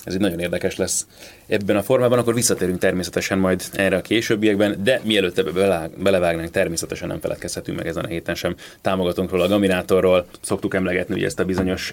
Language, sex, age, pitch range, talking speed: Hungarian, male, 30-49, 90-105 Hz, 175 wpm